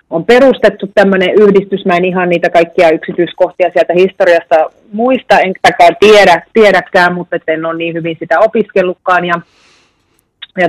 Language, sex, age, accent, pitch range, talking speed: Finnish, female, 30-49, native, 165-200 Hz, 145 wpm